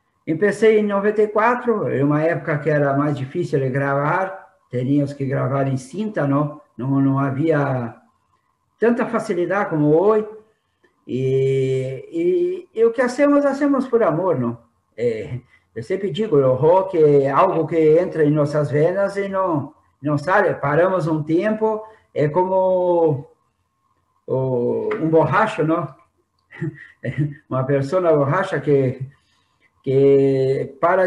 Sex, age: male, 50-69